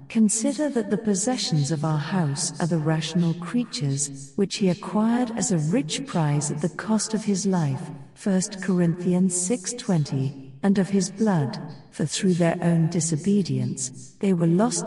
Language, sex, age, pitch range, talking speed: English, female, 50-69, 150-200 Hz, 155 wpm